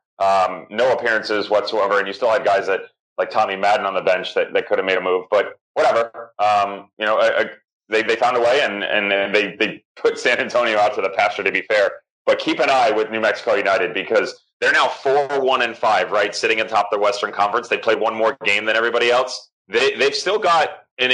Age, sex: 30-49, male